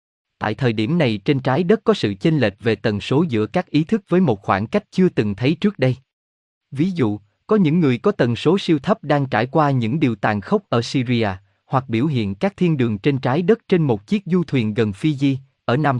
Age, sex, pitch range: 20-39, male, 110-160 Hz